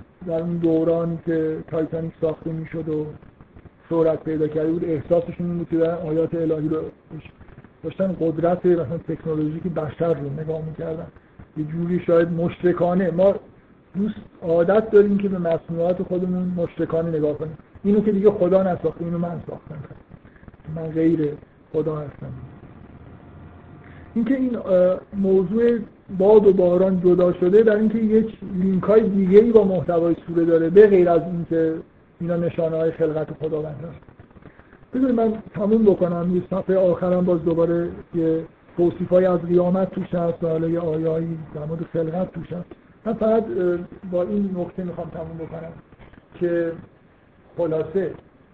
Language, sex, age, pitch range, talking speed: Persian, male, 50-69, 160-185 Hz, 140 wpm